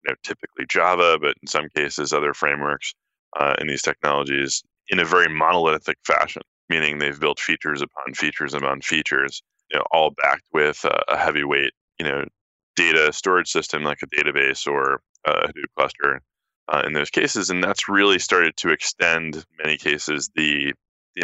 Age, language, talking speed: 10-29, English, 165 wpm